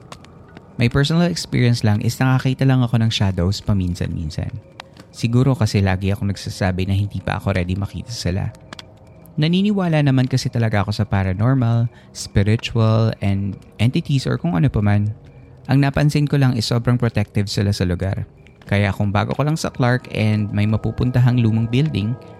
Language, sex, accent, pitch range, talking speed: Filipino, male, native, 100-130 Hz, 160 wpm